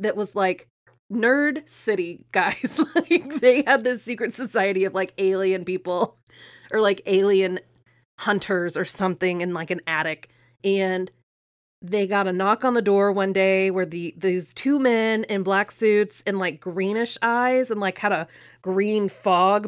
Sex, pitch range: female, 170-220 Hz